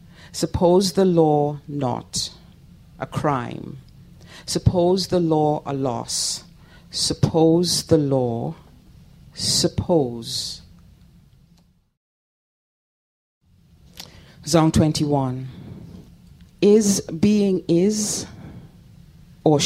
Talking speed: 65 wpm